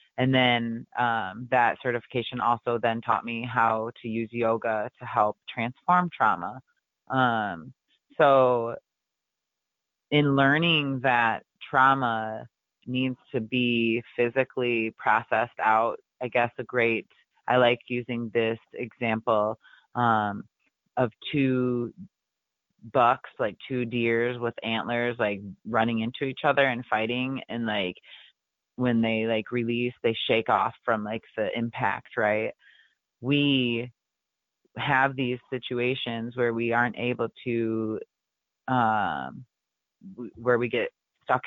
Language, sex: English, female